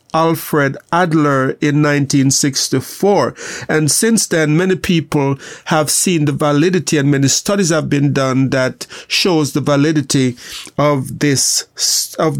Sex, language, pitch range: male, English, 145-170 Hz